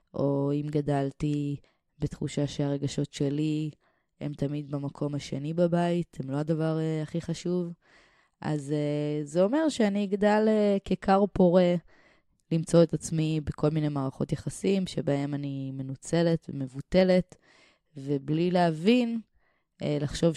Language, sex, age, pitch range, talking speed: English, female, 20-39, 145-180 Hz, 110 wpm